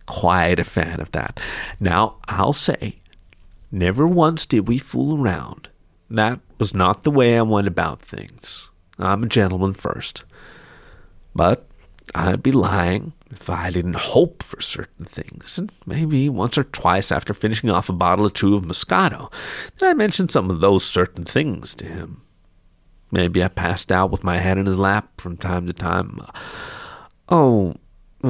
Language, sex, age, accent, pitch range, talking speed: English, male, 50-69, American, 90-130 Hz, 165 wpm